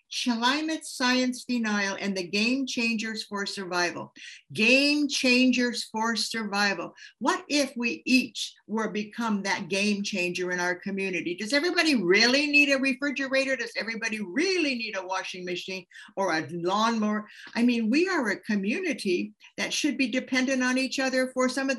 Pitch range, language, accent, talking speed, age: 190-265 Hz, English, American, 155 wpm, 60-79